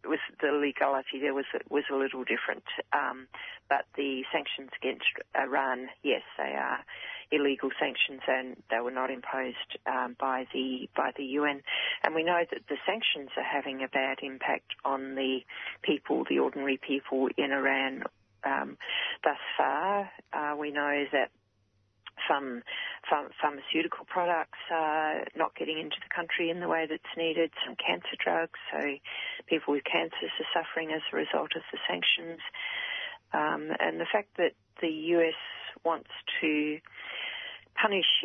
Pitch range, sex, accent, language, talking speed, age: 135-165 Hz, female, Australian, English, 150 wpm, 40-59